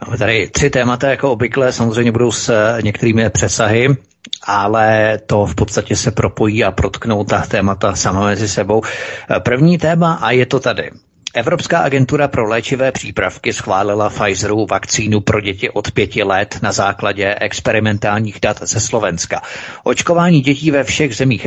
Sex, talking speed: male, 150 wpm